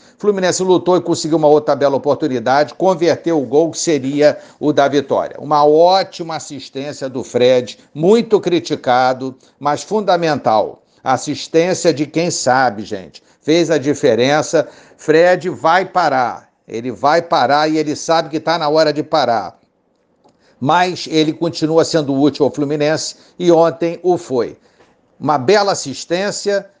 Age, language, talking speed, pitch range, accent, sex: 60-79, Portuguese, 140 wpm, 130-165 Hz, Brazilian, male